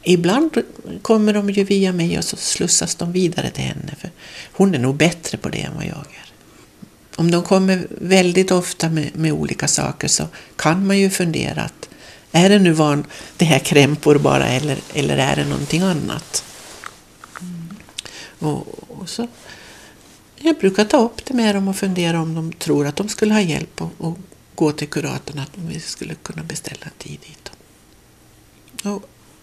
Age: 60-79